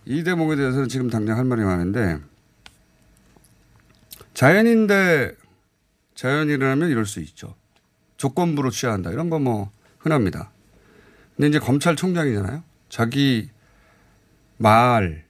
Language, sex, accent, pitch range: Korean, male, native, 105-150 Hz